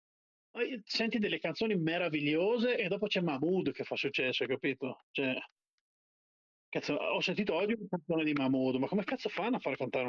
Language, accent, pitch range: Italian, native, 130-190 Hz